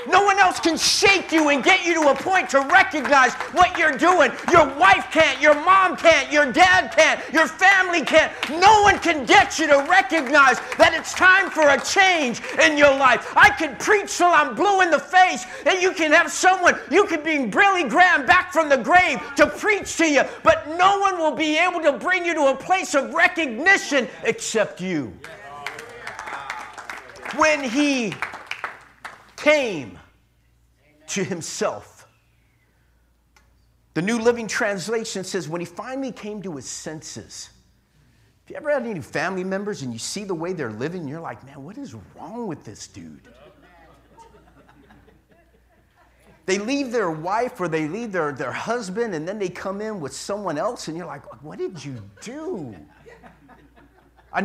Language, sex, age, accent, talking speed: English, male, 50-69, American, 170 wpm